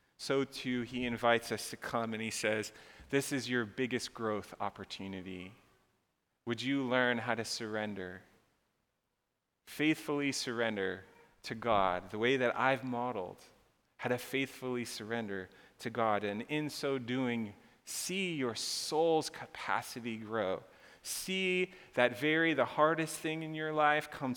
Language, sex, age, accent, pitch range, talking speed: English, male, 30-49, American, 110-145 Hz, 140 wpm